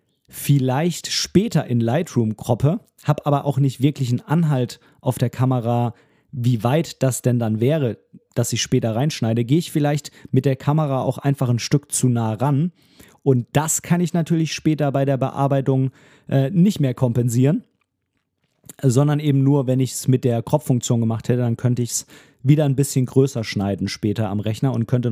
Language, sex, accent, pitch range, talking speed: German, male, German, 120-150 Hz, 180 wpm